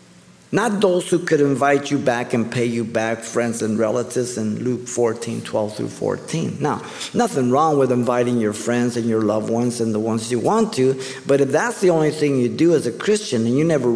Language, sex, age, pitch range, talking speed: English, male, 50-69, 125-170 Hz, 210 wpm